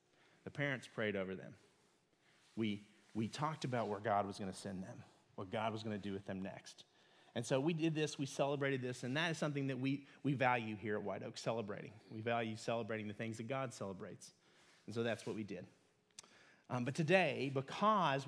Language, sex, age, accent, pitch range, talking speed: English, male, 30-49, American, 115-155 Hz, 210 wpm